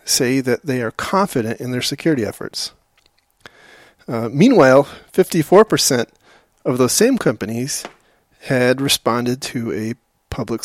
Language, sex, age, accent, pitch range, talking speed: English, male, 30-49, American, 120-150 Hz, 130 wpm